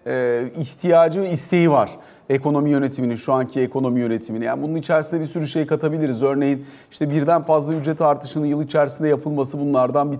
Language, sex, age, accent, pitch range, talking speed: Turkish, male, 40-59, native, 135-160 Hz, 165 wpm